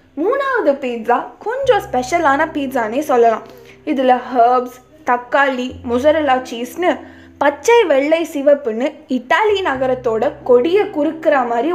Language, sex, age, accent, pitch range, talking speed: Tamil, female, 20-39, native, 250-345 Hz, 80 wpm